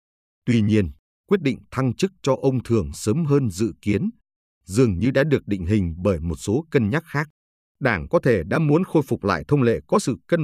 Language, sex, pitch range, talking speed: Vietnamese, male, 100-140 Hz, 220 wpm